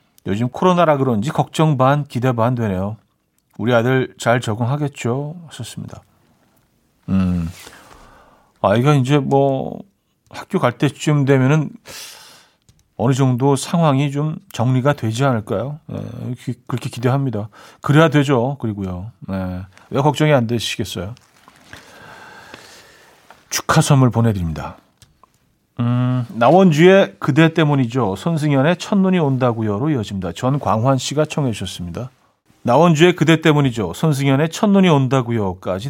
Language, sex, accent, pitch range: Korean, male, native, 105-150 Hz